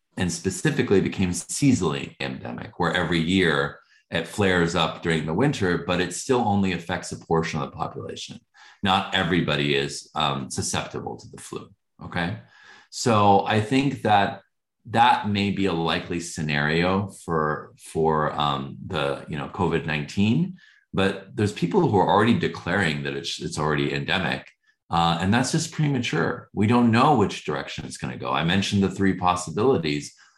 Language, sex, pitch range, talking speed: English, male, 80-100 Hz, 160 wpm